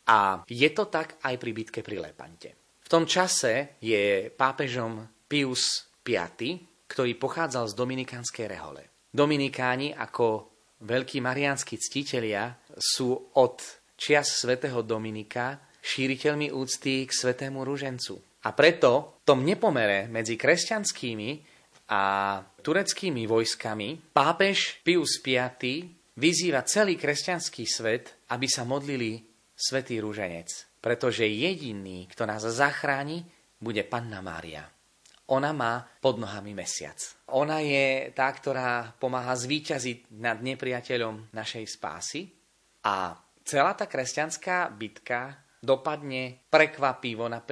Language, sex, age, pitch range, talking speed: Slovak, male, 30-49, 115-145 Hz, 110 wpm